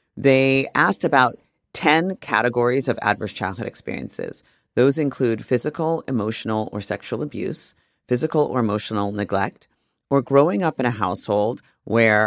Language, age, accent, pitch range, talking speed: English, 40-59, American, 105-140 Hz, 130 wpm